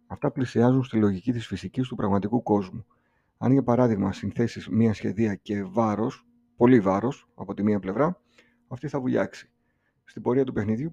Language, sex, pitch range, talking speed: Greek, male, 100-125 Hz, 165 wpm